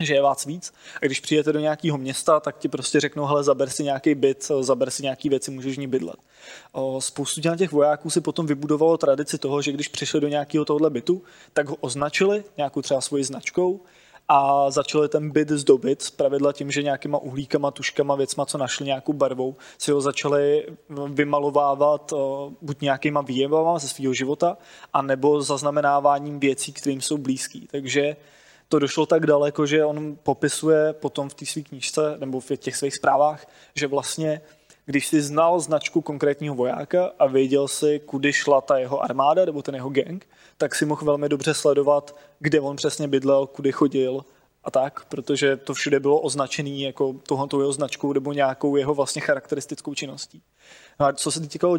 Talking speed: 180 wpm